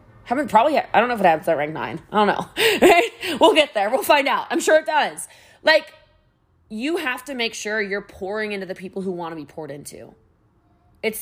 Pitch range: 150-215 Hz